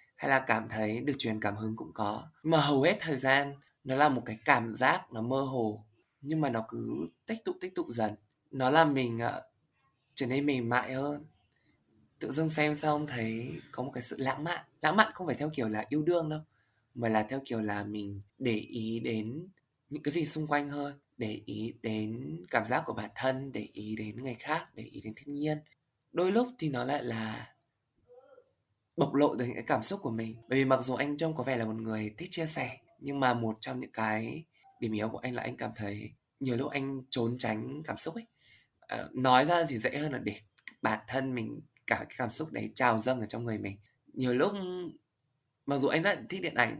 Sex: male